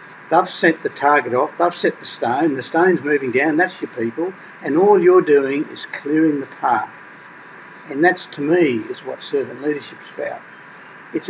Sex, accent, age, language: male, Australian, 60-79, English